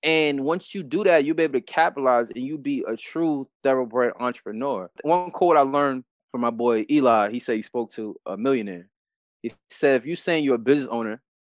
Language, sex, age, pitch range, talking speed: English, male, 20-39, 120-165 Hz, 215 wpm